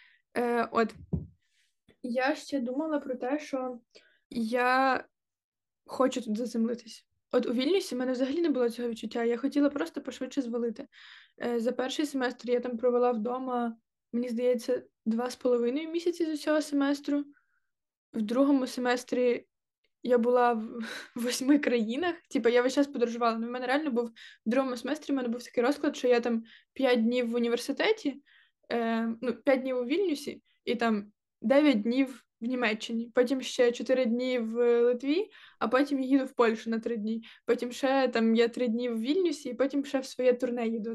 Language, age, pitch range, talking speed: Ukrainian, 20-39, 235-270 Hz, 170 wpm